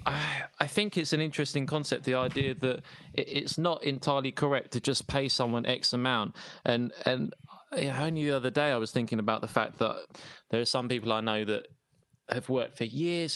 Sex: male